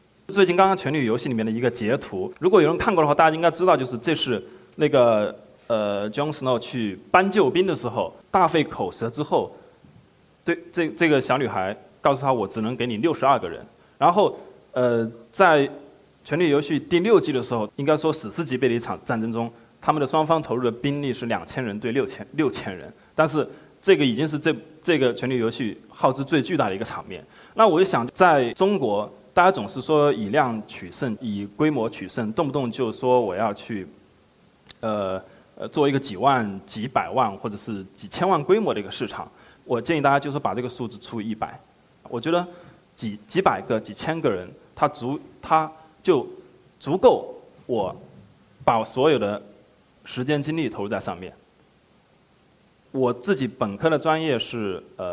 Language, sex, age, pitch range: Chinese, male, 20-39, 115-160 Hz